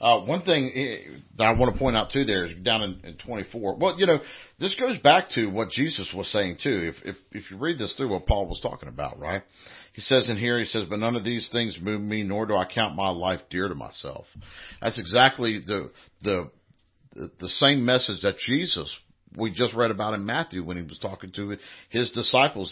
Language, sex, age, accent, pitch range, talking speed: English, male, 50-69, American, 90-120 Hz, 225 wpm